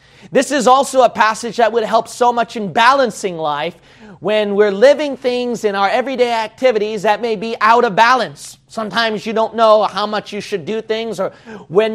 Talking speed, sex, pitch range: 195 wpm, male, 185-240 Hz